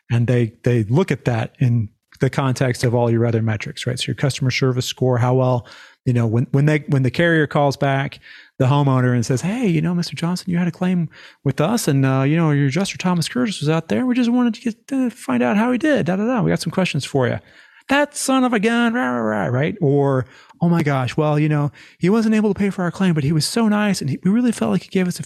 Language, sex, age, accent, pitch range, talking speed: English, male, 30-49, American, 125-160 Hz, 280 wpm